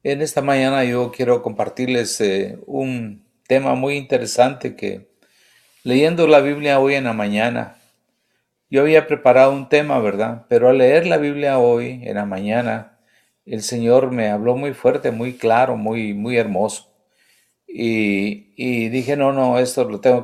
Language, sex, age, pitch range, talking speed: English, male, 50-69, 105-130 Hz, 155 wpm